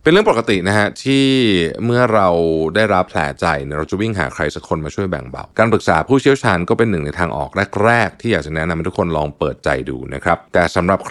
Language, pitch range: Thai, 80-105 Hz